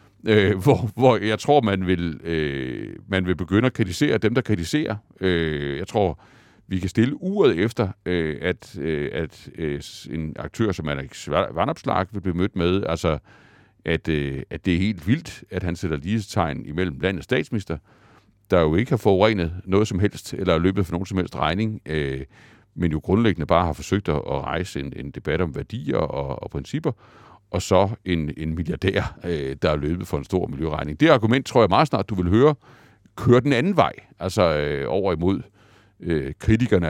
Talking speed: 185 wpm